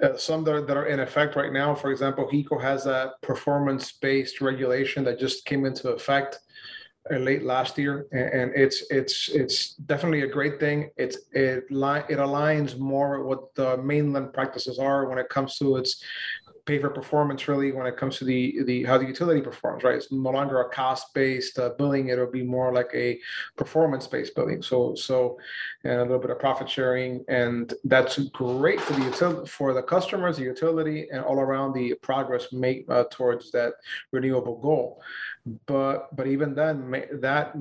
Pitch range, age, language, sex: 130-145 Hz, 30-49, English, male